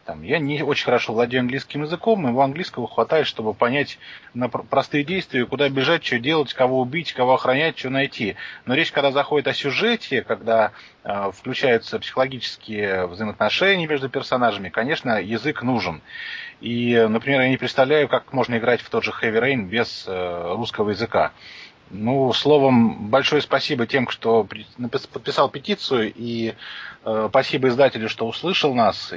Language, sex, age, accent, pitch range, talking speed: Russian, male, 20-39, native, 115-145 Hz, 145 wpm